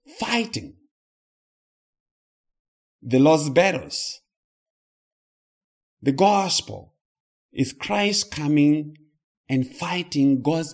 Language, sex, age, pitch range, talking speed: English, male, 50-69, 155-250 Hz, 65 wpm